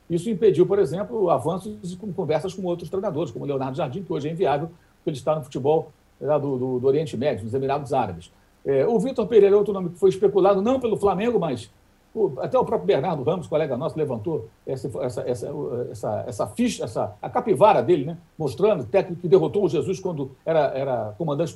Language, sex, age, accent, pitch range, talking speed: Portuguese, male, 60-79, Brazilian, 150-210 Hz, 210 wpm